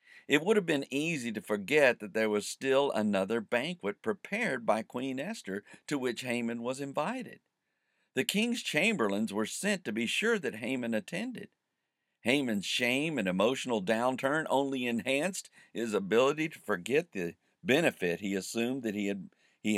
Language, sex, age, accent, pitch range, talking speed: English, male, 50-69, American, 100-130 Hz, 155 wpm